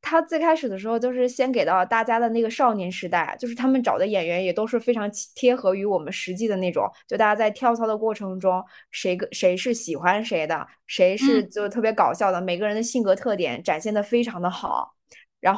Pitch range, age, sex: 185-225 Hz, 20-39, female